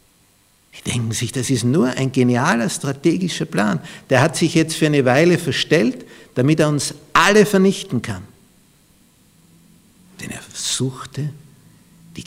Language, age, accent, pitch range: German, 60-79, Austrian, 110-155 Hz